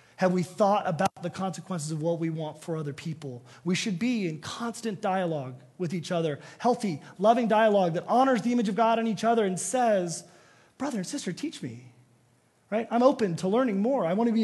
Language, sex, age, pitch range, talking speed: English, male, 30-49, 150-220 Hz, 210 wpm